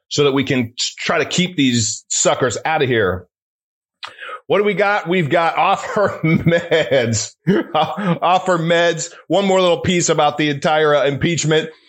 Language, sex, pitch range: English, male, 160-240 Hz